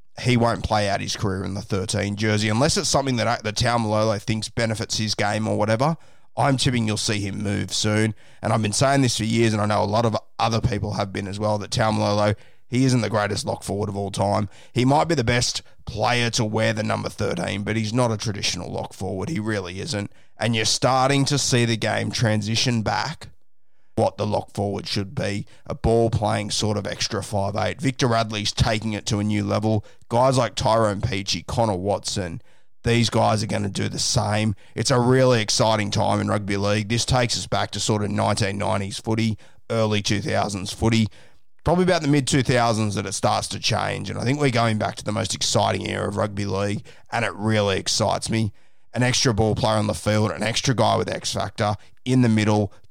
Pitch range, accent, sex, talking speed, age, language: 105-120 Hz, Australian, male, 215 wpm, 30-49, English